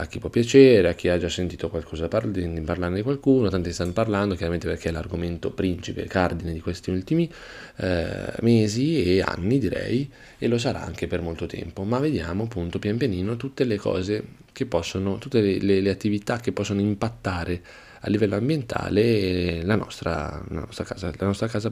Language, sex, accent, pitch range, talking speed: Italian, male, native, 90-110 Hz, 190 wpm